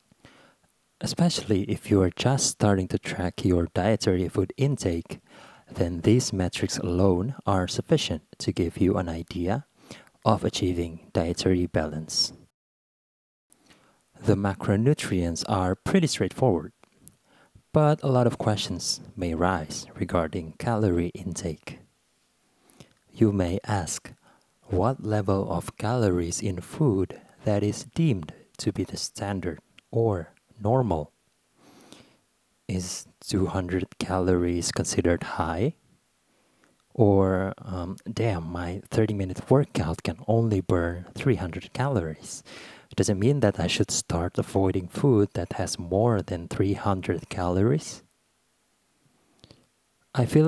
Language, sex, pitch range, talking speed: English, male, 90-110 Hz, 110 wpm